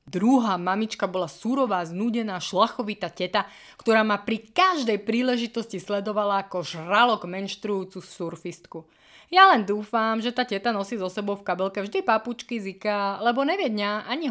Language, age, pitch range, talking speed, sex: Slovak, 20-39, 185-250 Hz, 145 wpm, female